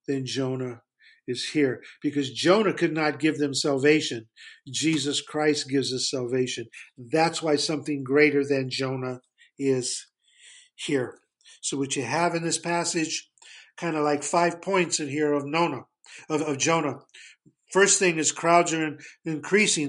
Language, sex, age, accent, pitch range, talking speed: English, male, 50-69, American, 145-180 Hz, 150 wpm